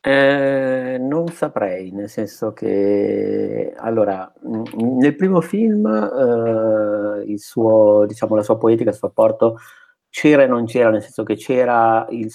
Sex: male